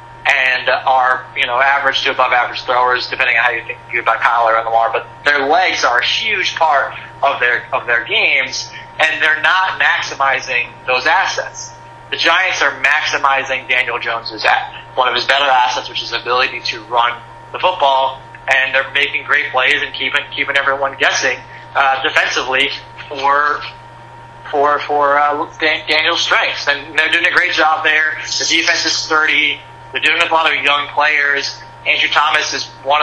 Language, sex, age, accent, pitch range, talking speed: English, male, 30-49, American, 125-145 Hz, 175 wpm